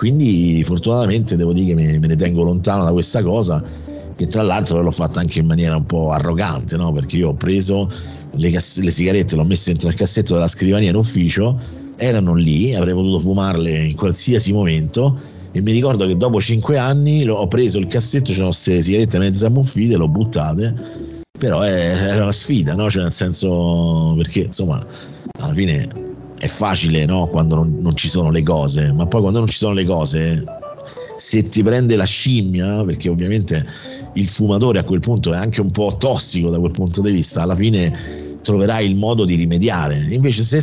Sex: male